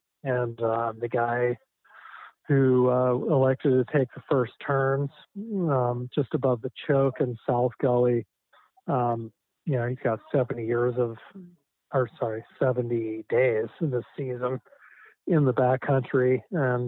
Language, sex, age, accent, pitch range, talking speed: English, male, 40-59, American, 120-140 Hz, 140 wpm